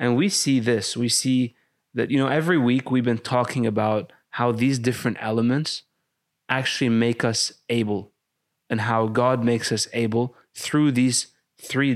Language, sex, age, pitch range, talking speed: English, male, 20-39, 115-130 Hz, 160 wpm